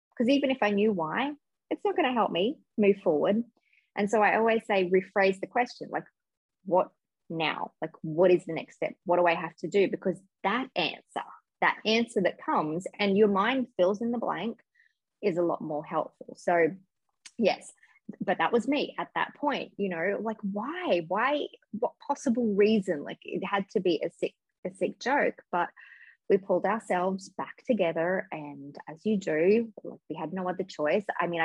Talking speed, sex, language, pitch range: 185 wpm, female, English, 175-215 Hz